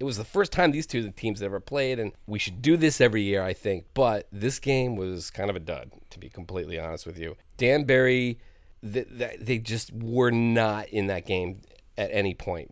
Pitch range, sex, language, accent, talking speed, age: 95-120 Hz, male, English, American, 210 wpm, 30-49